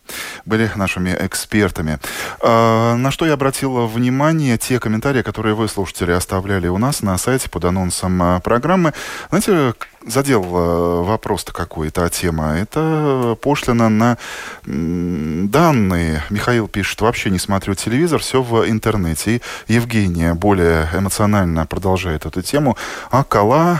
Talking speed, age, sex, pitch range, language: 125 wpm, 20-39, male, 85-115 Hz, Russian